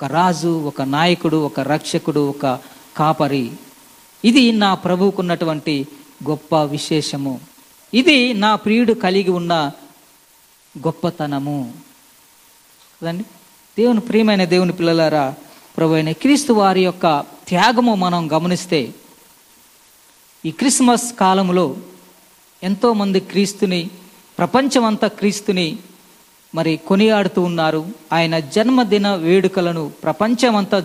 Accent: native